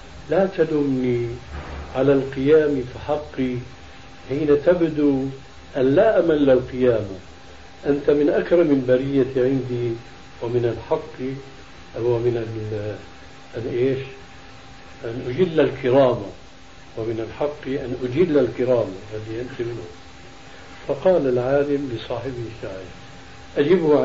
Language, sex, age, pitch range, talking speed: Arabic, male, 60-79, 115-145 Hz, 80 wpm